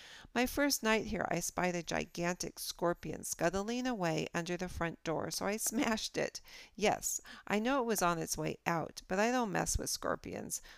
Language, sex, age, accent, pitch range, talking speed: English, female, 50-69, American, 165-230 Hz, 190 wpm